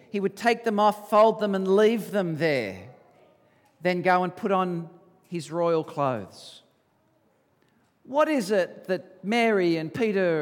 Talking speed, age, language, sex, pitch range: 150 wpm, 50-69, English, male, 150-205 Hz